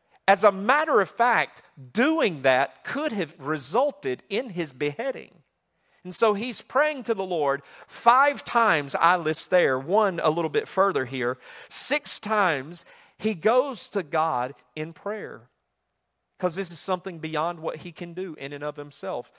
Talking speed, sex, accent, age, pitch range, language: 160 wpm, male, American, 40-59, 140-195 Hz, English